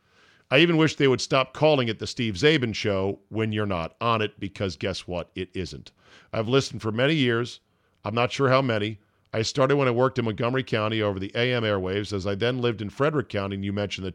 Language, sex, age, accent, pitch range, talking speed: English, male, 50-69, American, 95-125 Hz, 235 wpm